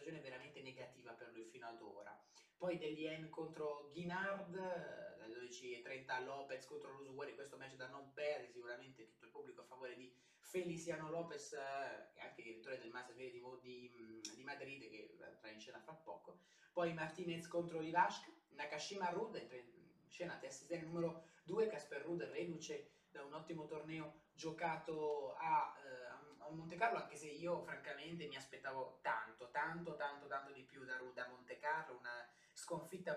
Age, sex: 20-39, male